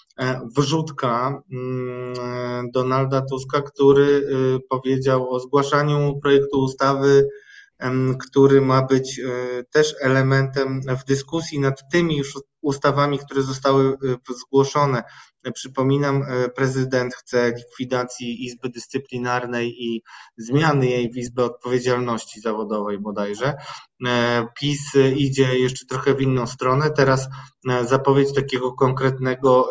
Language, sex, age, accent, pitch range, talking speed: Polish, male, 20-39, native, 130-155 Hz, 95 wpm